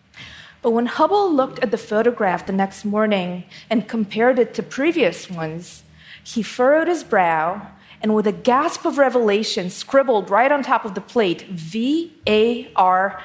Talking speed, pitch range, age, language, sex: 155 wpm, 200-255 Hz, 40-59, English, female